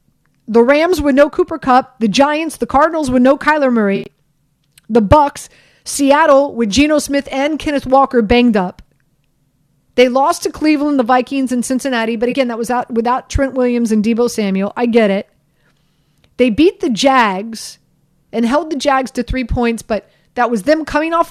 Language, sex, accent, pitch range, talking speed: English, female, American, 195-270 Hz, 180 wpm